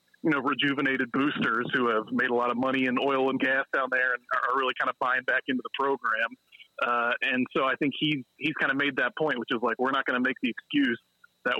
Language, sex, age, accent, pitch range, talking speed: English, male, 30-49, American, 125-155 Hz, 260 wpm